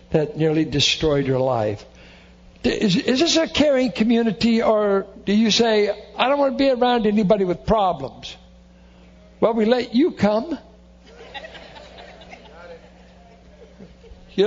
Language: English